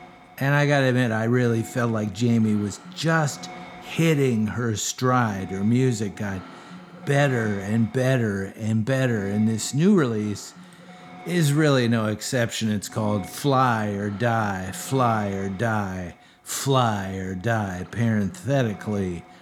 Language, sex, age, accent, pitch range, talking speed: English, male, 50-69, American, 100-130 Hz, 130 wpm